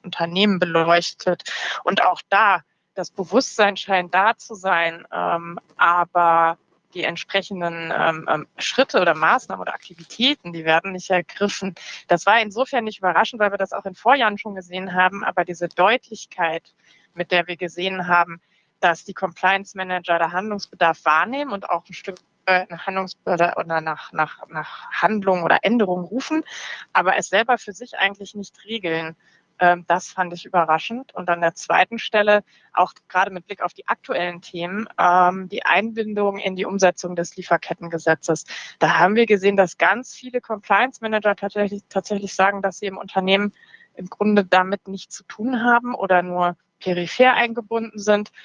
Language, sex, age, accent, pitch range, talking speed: German, female, 20-39, German, 175-210 Hz, 155 wpm